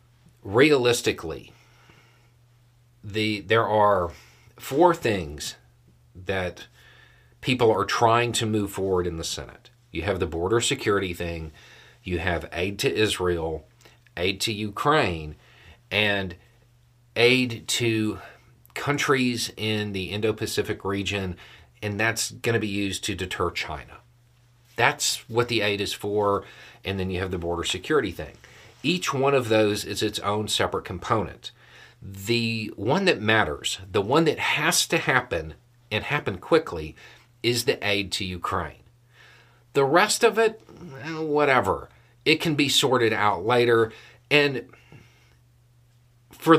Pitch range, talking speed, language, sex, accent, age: 100-120 Hz, 130 wpm, English, male, American, 40-59